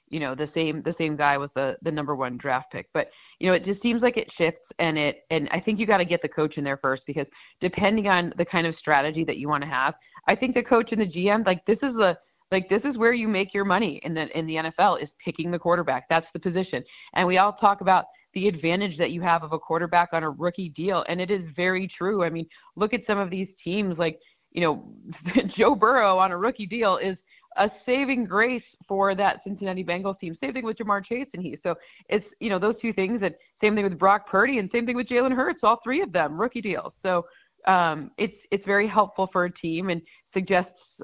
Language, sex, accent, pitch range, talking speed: English, female, American, 160-205 Hz, 250 wpm